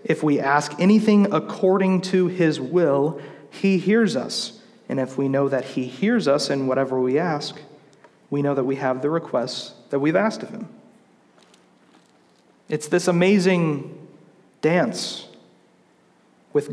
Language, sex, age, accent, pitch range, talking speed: English, male, 40-59, American, 150-195 Hz, 145 wpm